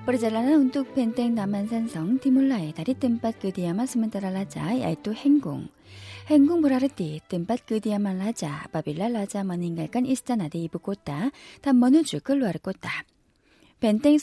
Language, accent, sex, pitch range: Indonesian, Korean, female, 185-260 Hz